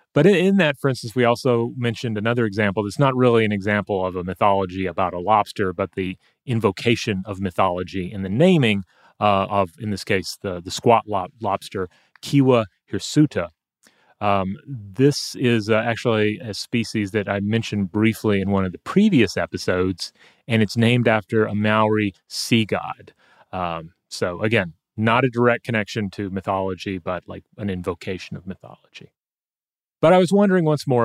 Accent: American